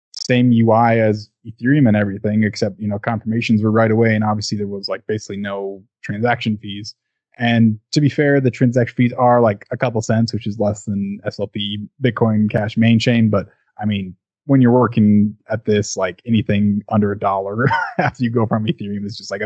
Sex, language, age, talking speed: male, Dutch, 20-39, 195 wpm